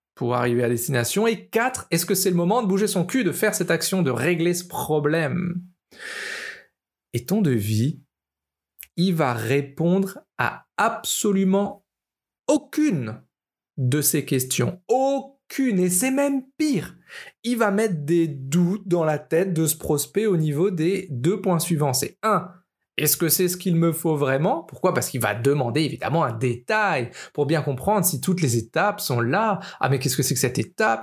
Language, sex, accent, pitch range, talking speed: French, male, French, 145-205 Hz, 180 wpm